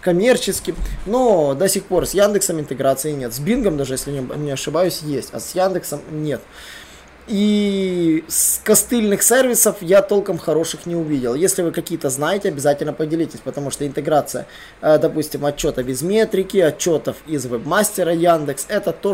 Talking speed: 155 wpm